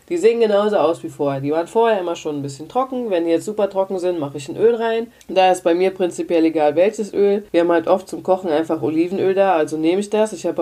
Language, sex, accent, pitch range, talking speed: German, female, German, 165-215 Hz, 270 wpm